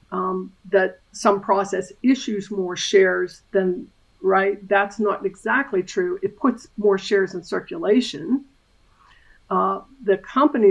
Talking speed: 125 wpm